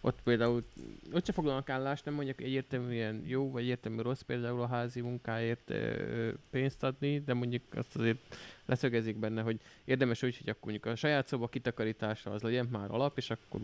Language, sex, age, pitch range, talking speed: Hungarian, male, 20-39, 110-140 Hz, 185 wpm